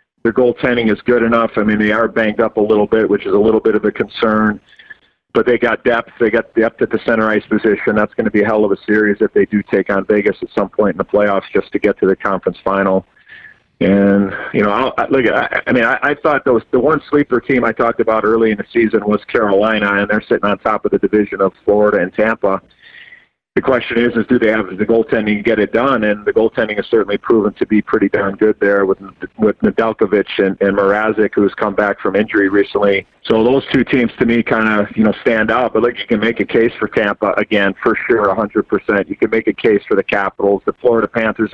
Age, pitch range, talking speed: 40-59, 100-115 Hz, 245 wpm